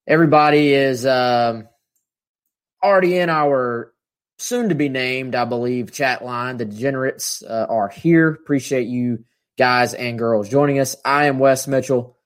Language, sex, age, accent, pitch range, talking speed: English, male, 20-39, American, 120-145 Hz, 130 wpm